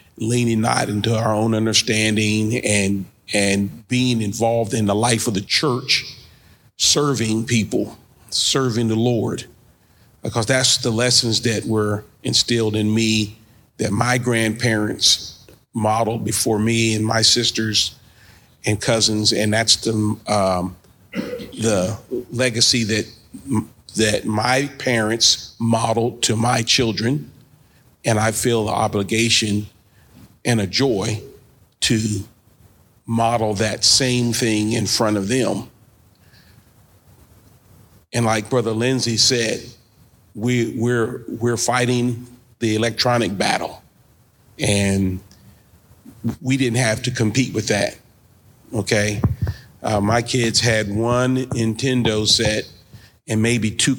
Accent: American